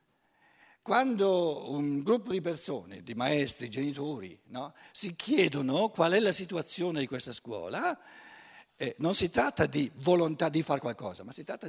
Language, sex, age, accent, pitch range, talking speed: Italian, male, 60-79, native, 140-200 Hz, 145 wpm